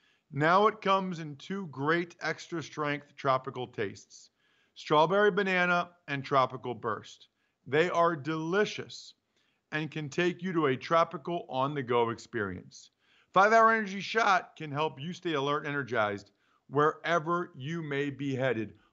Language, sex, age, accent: English, male, 40-59, American